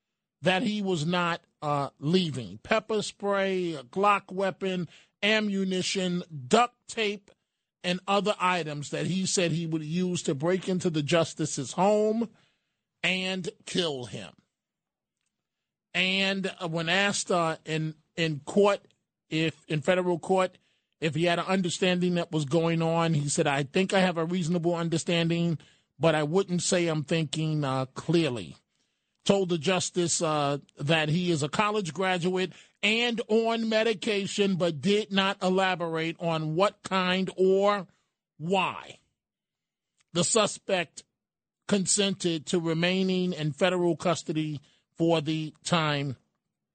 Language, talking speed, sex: English, 130 wpm, male